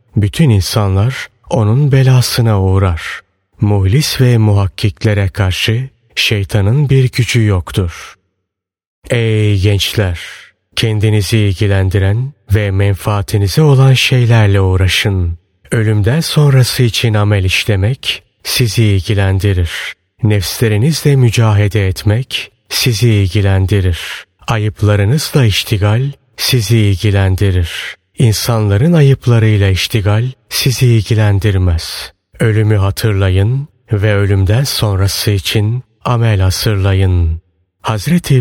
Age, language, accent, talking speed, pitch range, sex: 30-49, Turkish, native, 80 wpm, 100-120 Hz, male